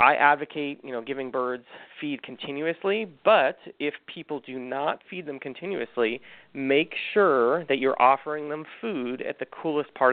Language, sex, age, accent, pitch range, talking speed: English, male, 30-49, American, 120-150 Hz, 160 wpm